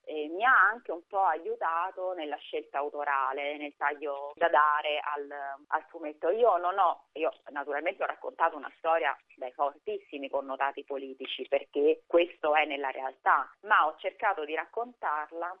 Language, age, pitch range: Italian, 30-49, 145-175 Hz